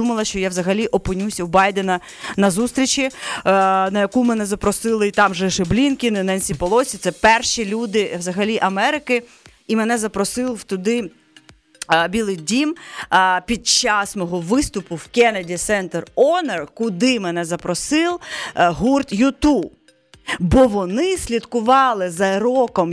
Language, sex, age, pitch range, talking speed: Ukrainian, female, 30-49, 185-225 Hz, 125 wpm